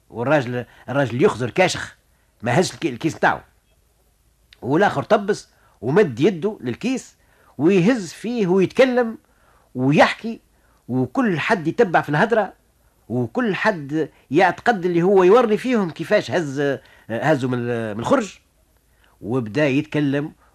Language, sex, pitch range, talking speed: Arabic, male, 120-185 Hz, 105 wpm